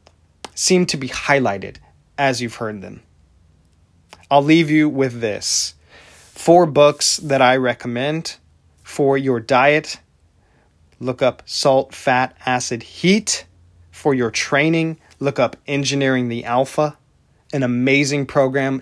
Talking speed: 120 wpm